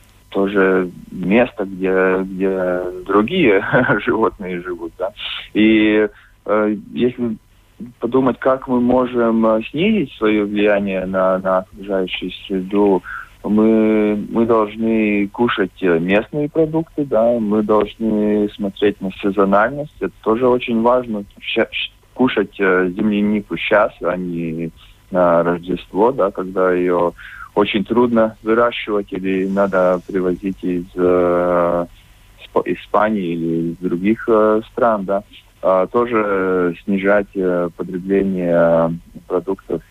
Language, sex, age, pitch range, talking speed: Russian, male, 30-49, 95-110 Hz, 105 wpm